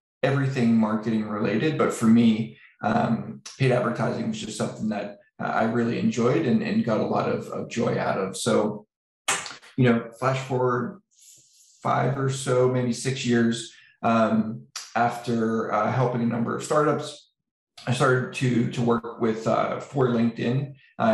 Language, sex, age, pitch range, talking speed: English, male, 20-39, 115-130 Hz, 160 wpm